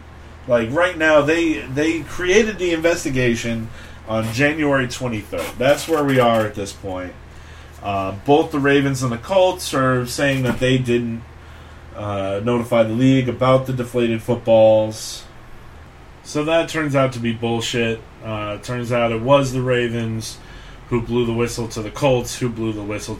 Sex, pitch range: male, 100-135 Hz